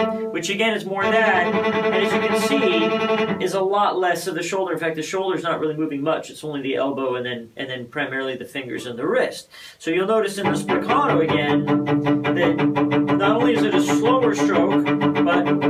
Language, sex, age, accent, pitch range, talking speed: English, male, 40-59, American, 145-185 Hz, 215 wpm